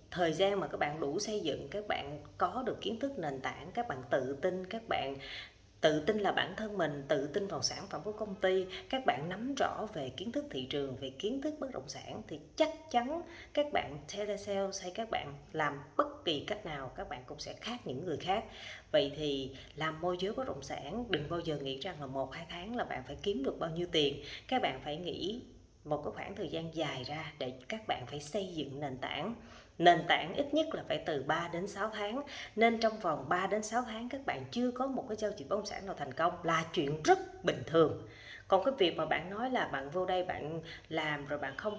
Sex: female